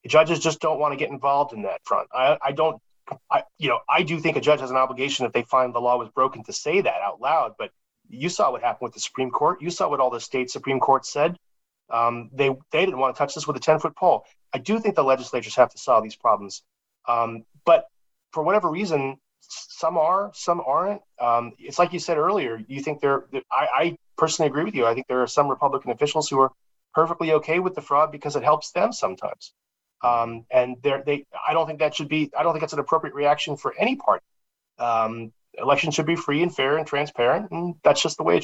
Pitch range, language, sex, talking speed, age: 125-165 Hz, English, male, 240 wpm, 30-49